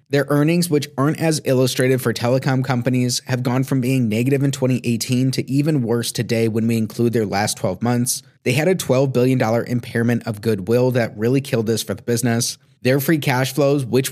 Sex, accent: male, American